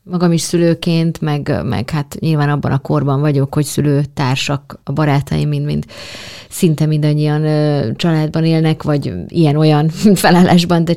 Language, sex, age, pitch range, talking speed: Hungarian, female, 20-39, 150-175 Hz, 130 wpm